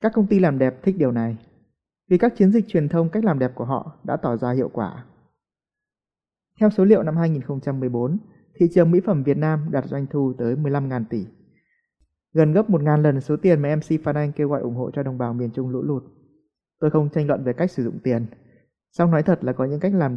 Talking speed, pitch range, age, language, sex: 235 wpm, 125-175 Hz, 20-39, Vietnamese, male